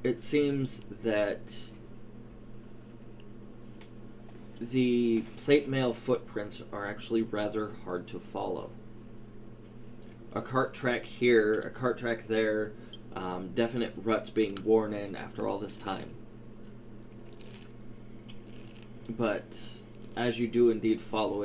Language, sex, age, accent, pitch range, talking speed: English, male, 20-39, American, 110-115 Hz, 105 wpm